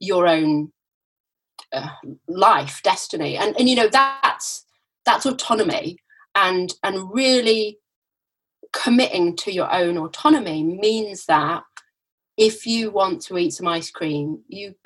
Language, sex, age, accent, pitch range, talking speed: English, female, 30-49, British, 185-280 Hz, 125 wpm